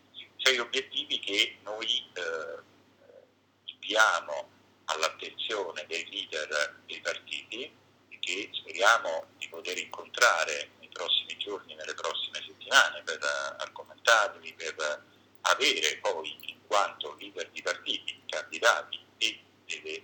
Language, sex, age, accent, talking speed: Italian, male, 50-69, native, 110 wpm